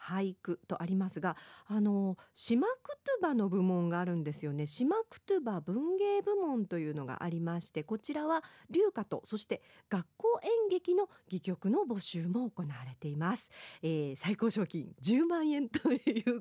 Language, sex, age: Japanese, female, 40-59